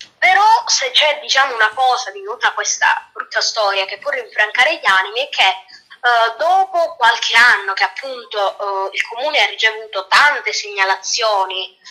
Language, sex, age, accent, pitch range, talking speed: Italian, female, 20-39, native, 200-320 Hz, 155 wpm